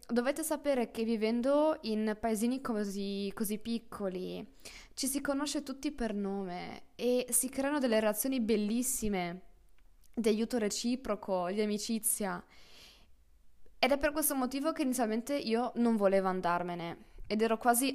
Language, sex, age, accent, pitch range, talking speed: Italian, female, 20-39, native, 190-230 Hz, 135 wpm